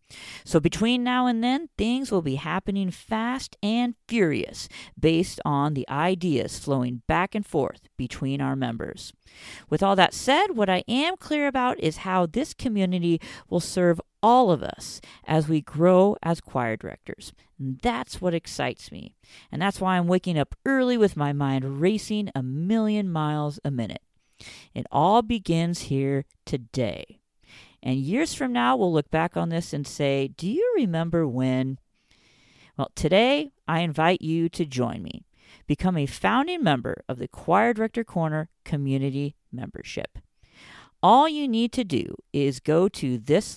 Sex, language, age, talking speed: female, English, 40-59, 160 wpm